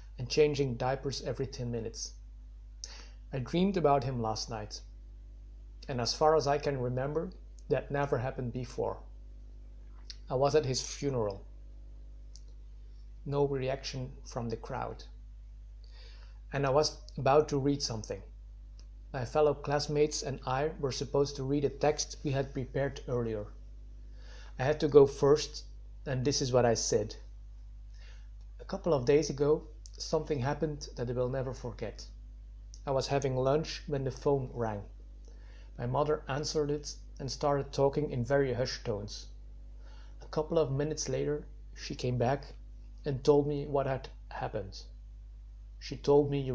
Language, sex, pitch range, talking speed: English, male, 115-145 Hz, 145 wpm